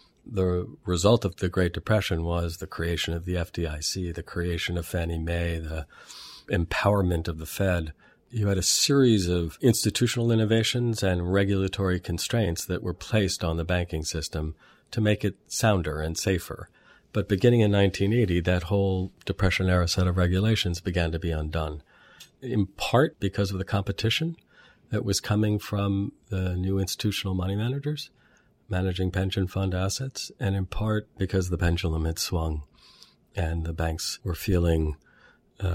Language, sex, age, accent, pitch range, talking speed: English, male, 50-69, American, 85-100 Hz, 155 wpm